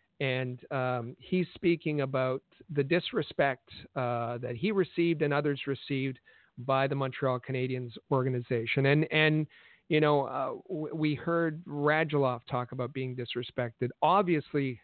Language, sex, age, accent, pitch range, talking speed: English, male, 50-69, American, 130-155 Hz, 135 wpm